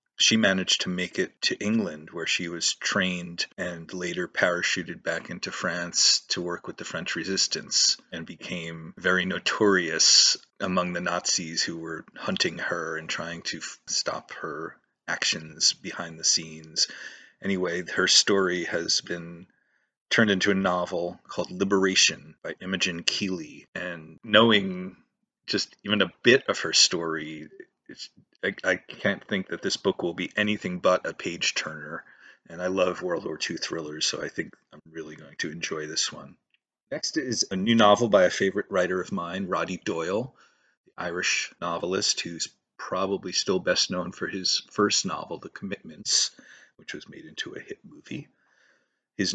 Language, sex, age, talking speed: English, male, 30-49, 160 wpm